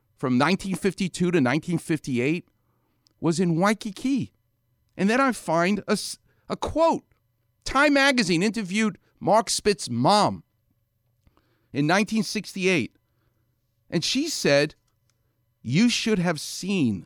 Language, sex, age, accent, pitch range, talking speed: English, male, 50-69, American, 115-175 Hz, 100 wpm